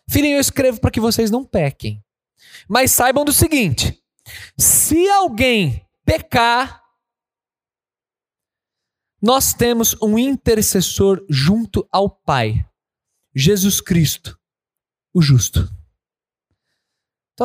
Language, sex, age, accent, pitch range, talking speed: Portuguese, male, 20-39, Brazilian, 165-240 Hz, 95 wpm